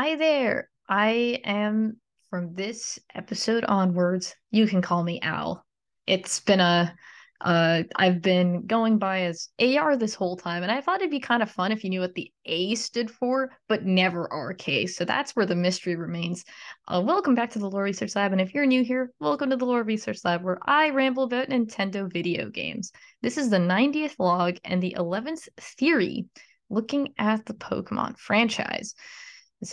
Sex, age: female, 20-39